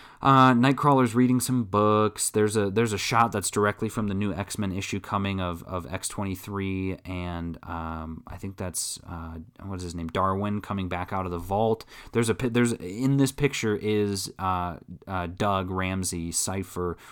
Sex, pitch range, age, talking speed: male, 90-115 Hz, 20-39, 175 wpm